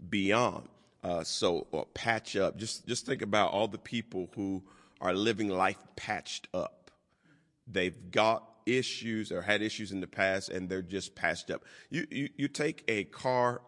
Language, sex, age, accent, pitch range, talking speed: English, male, 40-59, American, 95-110 Hz, 170 wpm